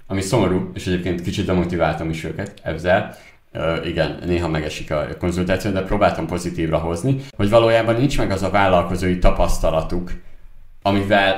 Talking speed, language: 140 wpm, Hungarian